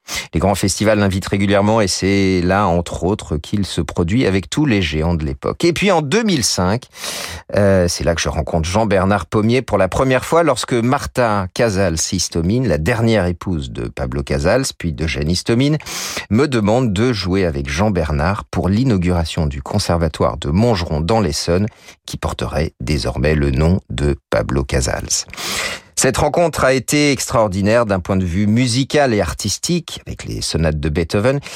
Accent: French